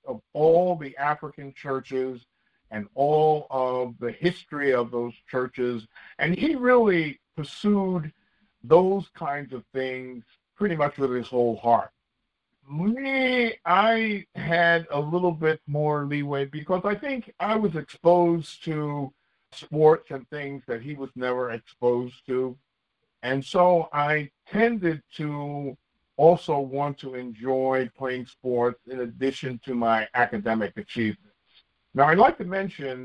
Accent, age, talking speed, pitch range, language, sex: American, 60-79, 135 wpm, 125-175 Hz, English, male